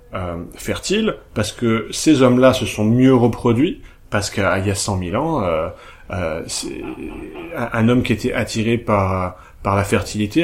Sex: male